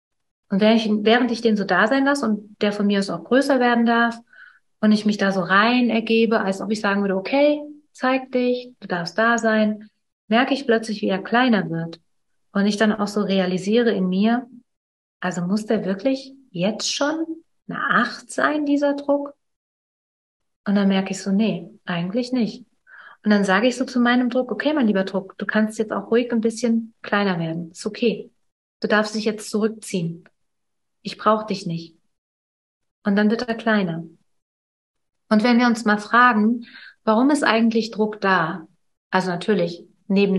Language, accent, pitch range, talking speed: German, German, 195-240 Hz, 180 wpm